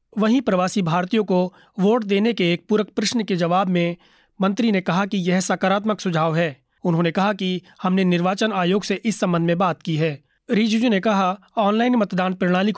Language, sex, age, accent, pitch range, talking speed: Hindi, male, 30-49, native, 175-210 Hz, 190 wpm